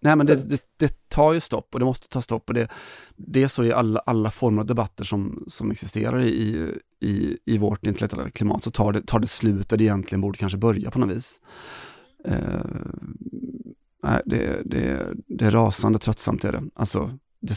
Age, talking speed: 30-49, 205 wpm